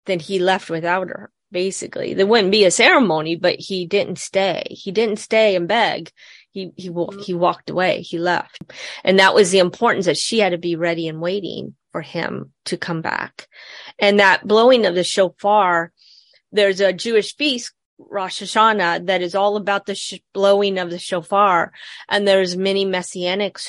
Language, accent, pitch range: English, American, 180-205 Hz